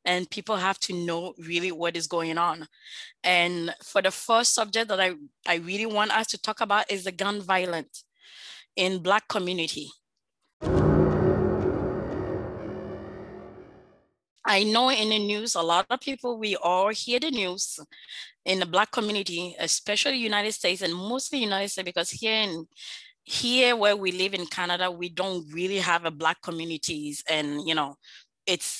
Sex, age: female, 20-39